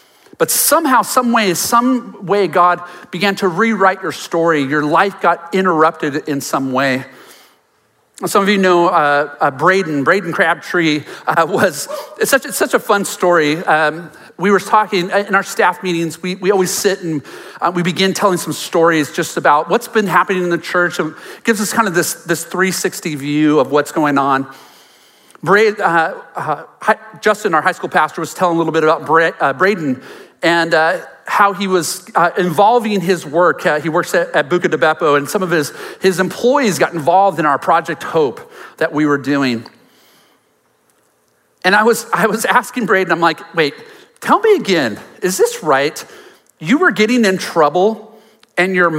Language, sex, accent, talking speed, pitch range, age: English, male, American, 185 wpm, 160-205 Hz, 40-59